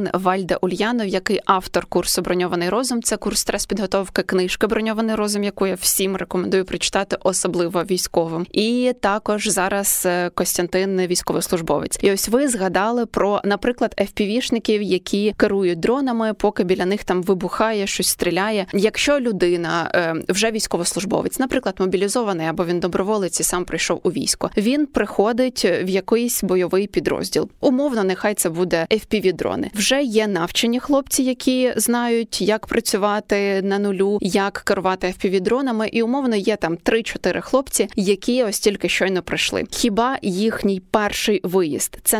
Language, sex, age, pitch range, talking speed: Ukrainian, female, 20-39, 185-225 Hz, 135 wpm